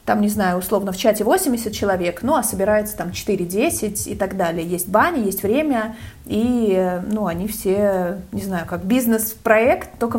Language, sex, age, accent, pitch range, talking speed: Russian, female, 20-39, native, 200-235 Hz, 170 wpm